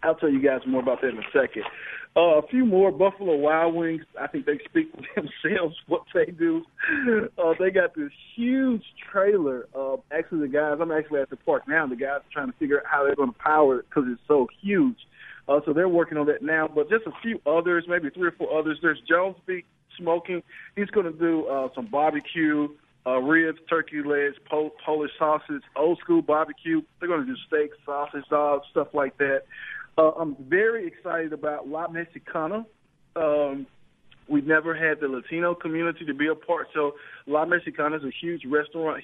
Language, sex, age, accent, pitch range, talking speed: English, male, 40-59, American, 145-170 Hz, 200 wpm